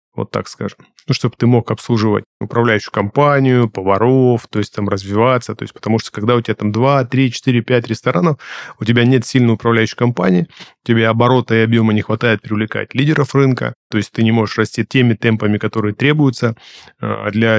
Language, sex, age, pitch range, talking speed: Russian, male, 20-39, 110-125 Hz, 185 wpm